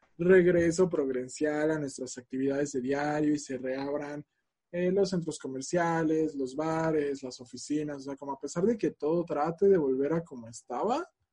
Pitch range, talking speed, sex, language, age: 140-185 Hz, 170 wpm, male, Spanish, 20-39